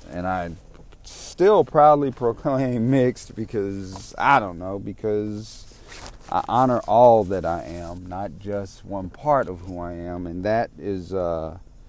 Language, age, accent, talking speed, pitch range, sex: English, 40-59, American, 140 wpm, 90-115 Hz, male